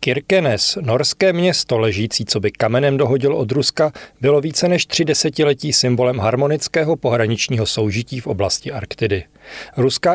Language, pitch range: Czech, 115-145 Hz